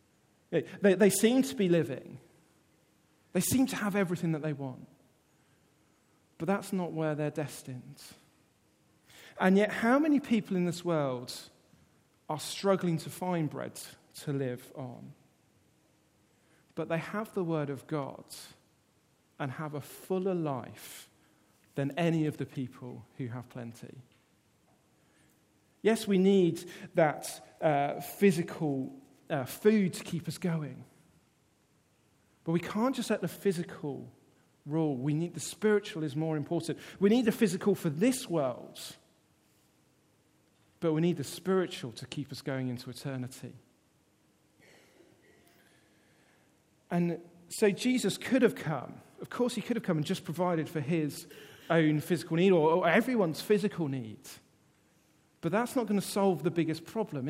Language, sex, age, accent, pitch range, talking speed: English, male, 40-59, British, 145-195 Hz, 140 wpm